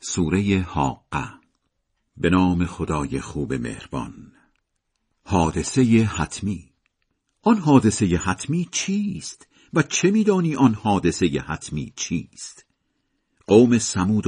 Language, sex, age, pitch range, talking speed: Persian, male, 50-69, 90-140 Hz, 95 wpm